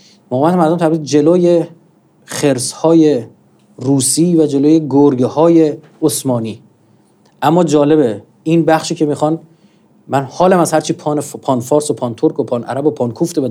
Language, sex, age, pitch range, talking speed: Persian, male, 40-59, 130-165 Hz, 150 wpm